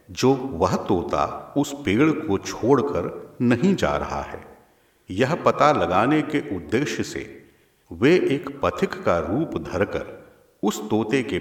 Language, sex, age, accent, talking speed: Hindi, male, 50-69, native, 135 wpm